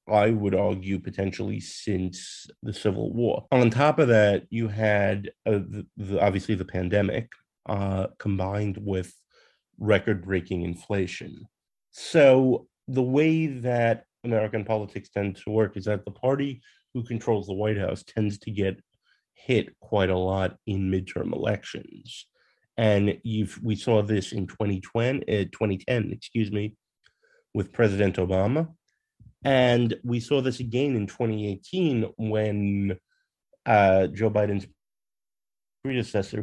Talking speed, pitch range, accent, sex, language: 130 wpm, 95-115 Hz, American, male, English